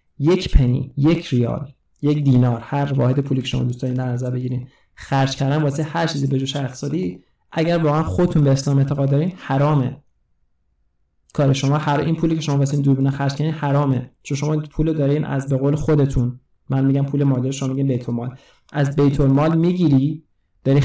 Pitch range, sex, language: 130-155 Hz, male, Persian